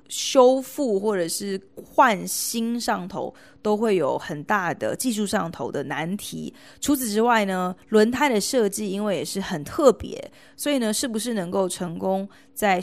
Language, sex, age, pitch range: Chinese, female, 20-39, 180-230 Hz